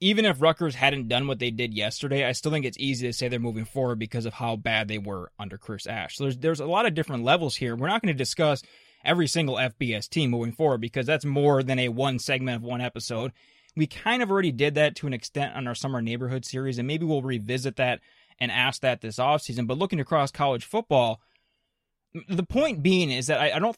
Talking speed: 240 wpm